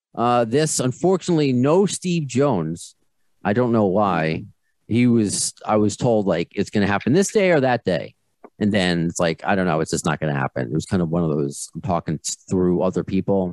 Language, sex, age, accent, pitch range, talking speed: English, male, 40-59, American, 90-120 Hz, 220 wpm